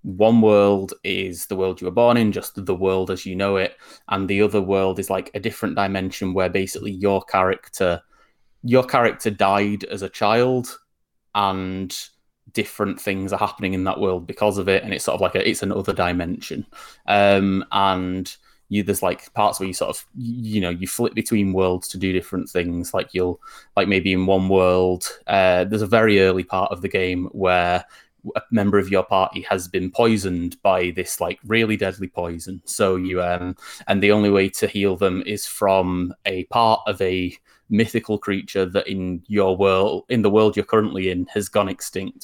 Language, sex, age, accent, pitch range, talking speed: English, male, 20-39, British, 95-105 Hz, 195 wpm